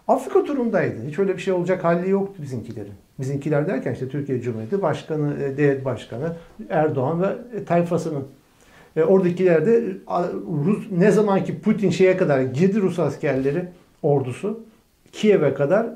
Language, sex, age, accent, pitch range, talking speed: Turkish, male, 60-79, native, 140-200 Hz, 125 wpm